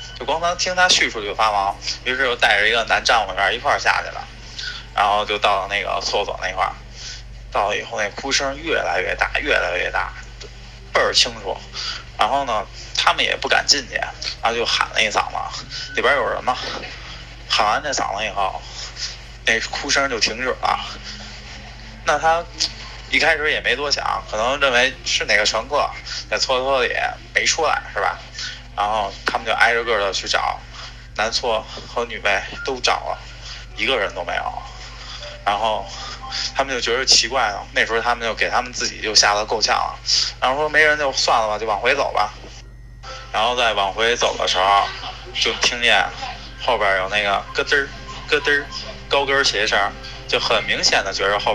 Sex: male